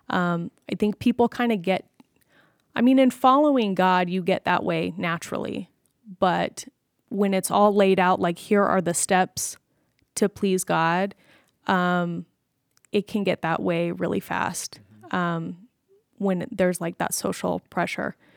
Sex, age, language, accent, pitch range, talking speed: female, 20-39, English, American, 170-195 Hz, 150 wpm